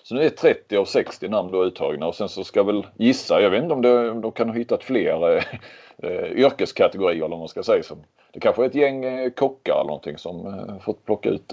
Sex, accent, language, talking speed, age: male, native, Swedish, 235 wpm, 30-49